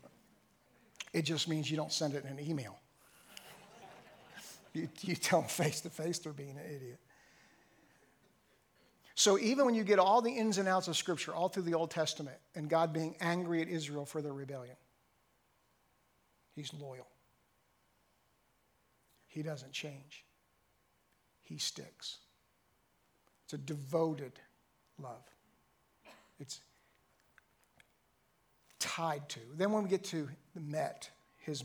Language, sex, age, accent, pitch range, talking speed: English, male, 50-69, American, 145-175 Hz, 130 wpm